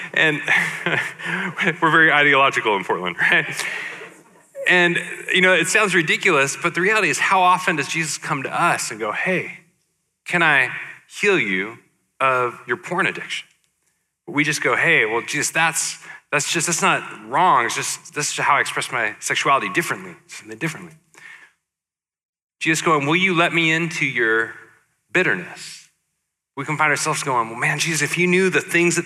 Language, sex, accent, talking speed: English, male, American, 170 wpm